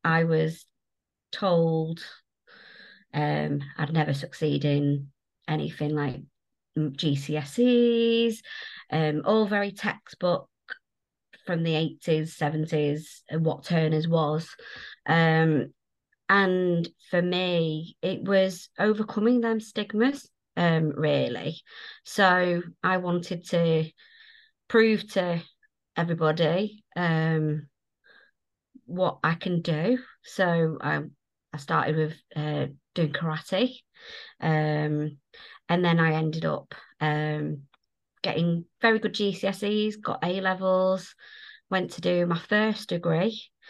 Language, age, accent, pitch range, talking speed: English, 30-49, British, 155-195 Hz, 100 wpm